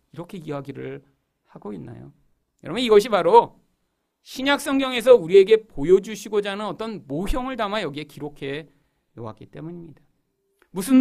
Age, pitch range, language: 40-59, 180-295 Hz, Korean